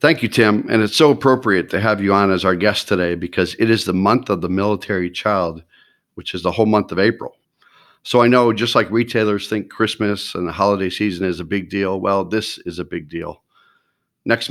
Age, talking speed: 50-69, 225 wpm